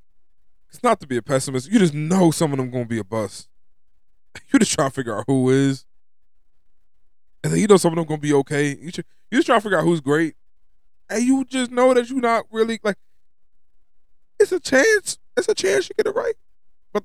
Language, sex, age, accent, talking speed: English, male, 20-39, American, 225 wpm